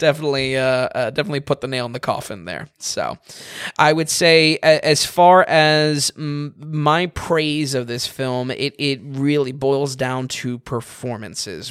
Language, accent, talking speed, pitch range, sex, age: English, American, 160 wpm, 130-155 Hz, male, 20-39